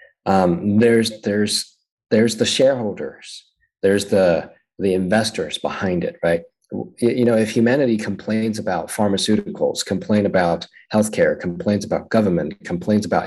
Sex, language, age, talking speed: male, English, 30-49, 125 wpm